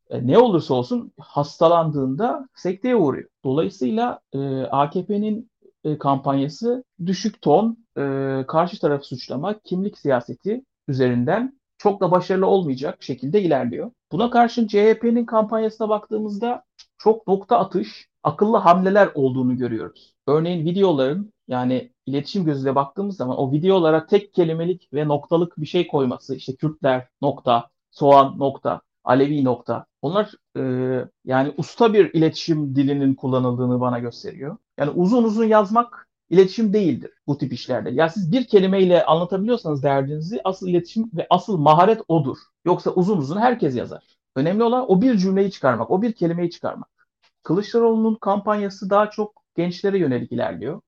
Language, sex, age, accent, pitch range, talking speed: Turkish, male, 60-79, native, 140-205 Hz, 135 wpm